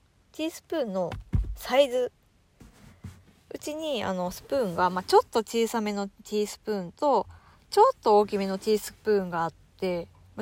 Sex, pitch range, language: female, 195-270 Hz, Japanese